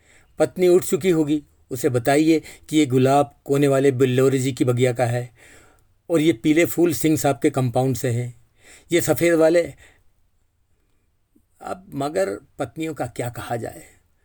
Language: Hindi